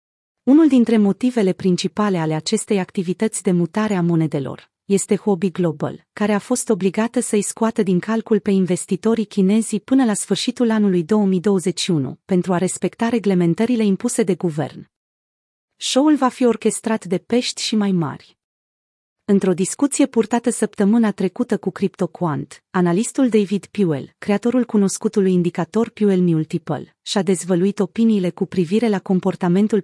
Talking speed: 135 wpm